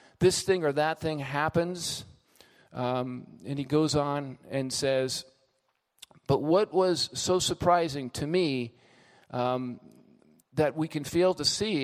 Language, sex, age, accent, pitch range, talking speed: English, male, 50-69, American, 140-180 Hz, 135 wpm